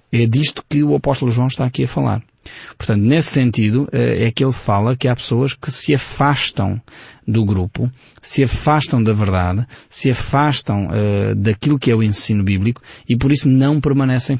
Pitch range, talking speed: 110-140 Hz, 175 wpm